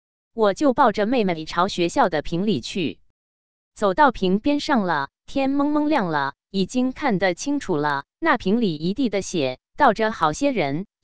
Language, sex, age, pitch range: Chinese, female, 20-39, 160-240 Hz